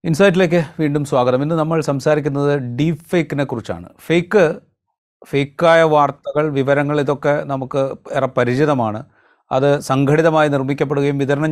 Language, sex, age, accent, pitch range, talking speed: Malayalam, male, 30-49, native, 125-150 Hz, 110 wpm